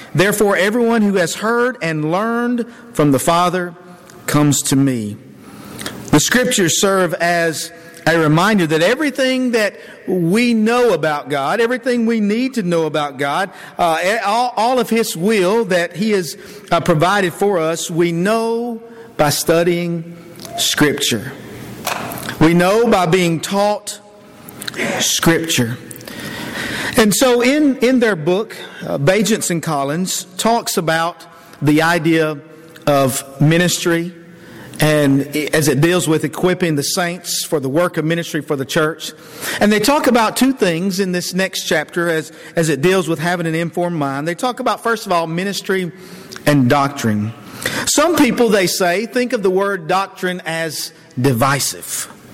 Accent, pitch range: American, 155-205 Hz